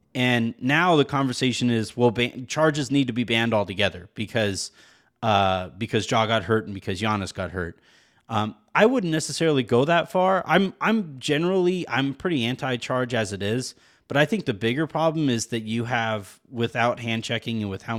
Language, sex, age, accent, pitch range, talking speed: English, male, 30-49, American, 110-145 Hz, 185 wpm